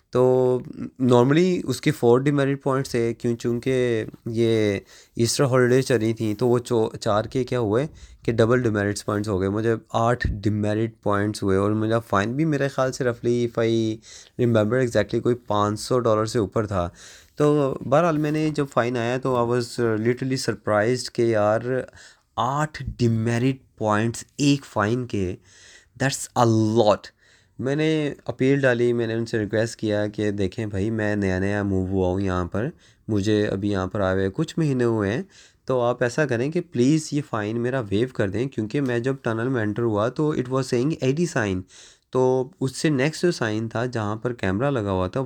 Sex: male